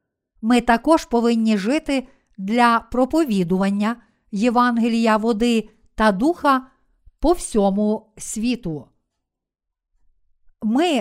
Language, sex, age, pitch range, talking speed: Ukrainian, female, 50-69, 210-260 Hz, 75 wpm